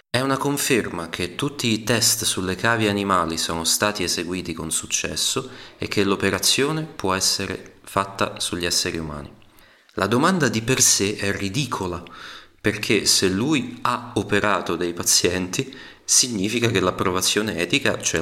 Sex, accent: male, native